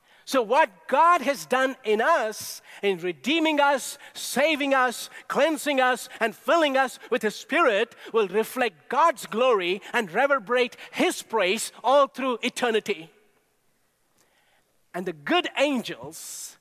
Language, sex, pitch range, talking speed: English, male, 155-245 Hz, 125 wpm